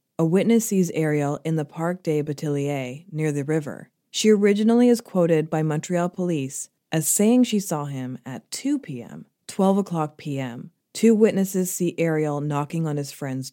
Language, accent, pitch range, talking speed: English, American, 135-170 Hz, 170 wpm